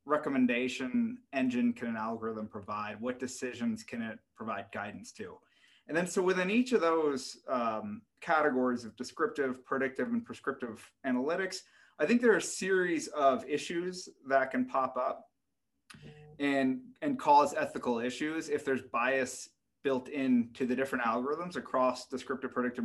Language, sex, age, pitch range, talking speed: English, male, 30-49, 125-155 Hz, 145 wpm